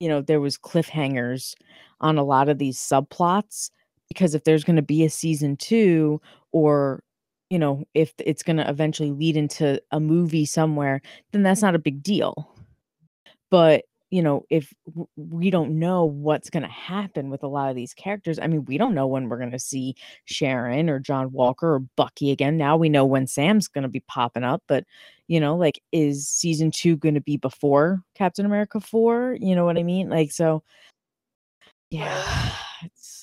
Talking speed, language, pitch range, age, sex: 190 wpm, English, 135-165 Hz, 20-39, female